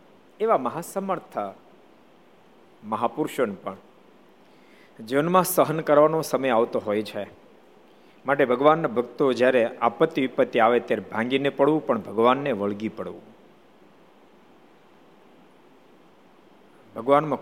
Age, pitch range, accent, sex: 50-69, 115-150 Hz, native, male